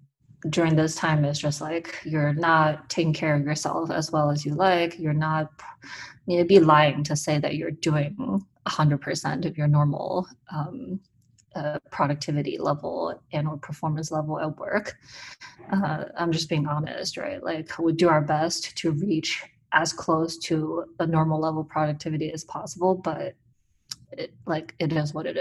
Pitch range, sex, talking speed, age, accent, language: 150-165 Hz, female, 175 wpm, 20-39, American, English